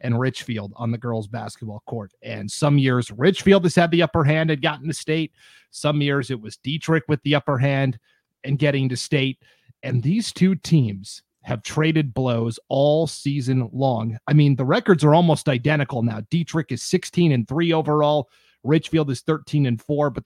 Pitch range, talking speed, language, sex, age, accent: 125-160 Hz, 185 wpm, English, male, 30-49, American